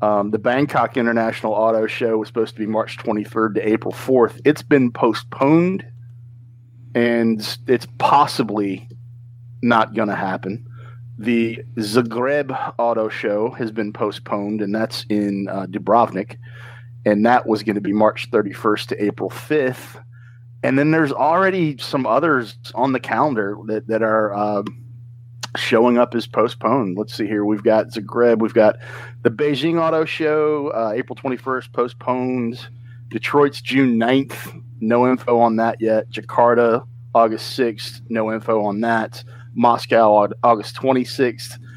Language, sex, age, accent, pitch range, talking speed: English, male, 40-59, American, 110-125 Hz, 140 wpm